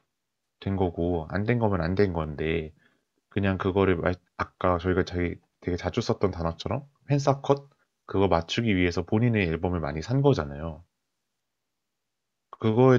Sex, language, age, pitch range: male, Korean, 30-49, 90-115 Hz